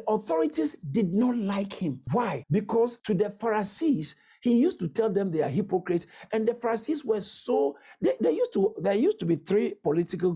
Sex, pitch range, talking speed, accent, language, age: male, 160-220 Hz, 190 wpm, Nigerian, English, 50-69